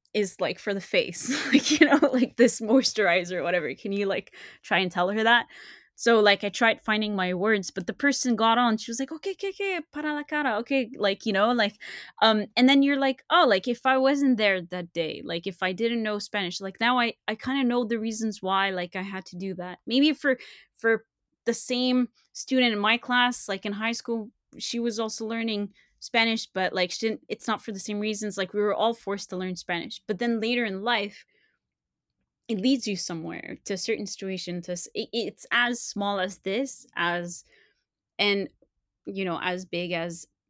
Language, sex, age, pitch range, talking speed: English, female, 20-39, 180-235 Hz, 215 wpm